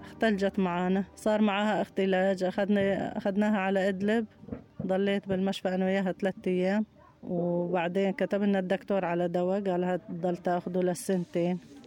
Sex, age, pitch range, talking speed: female, 20-39, 185-225 Hz, 115 wpm